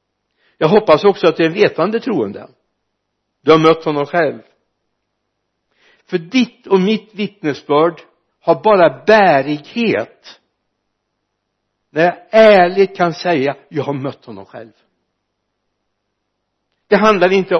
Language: Swedish